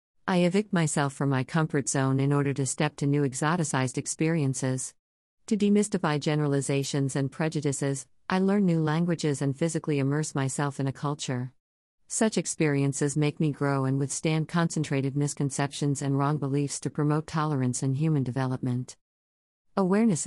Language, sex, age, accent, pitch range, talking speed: English, female, 50-69, American, 130-155 Hz, 150 wpm